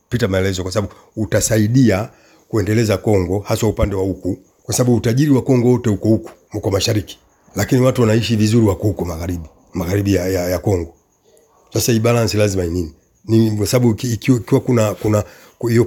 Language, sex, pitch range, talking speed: Swahili, male, 105-125 Hz, 180 wpm